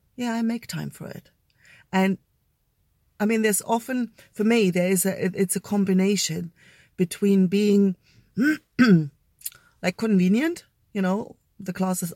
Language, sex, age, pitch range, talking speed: English, female, 40-59, 175-205 Hz, 135 wpm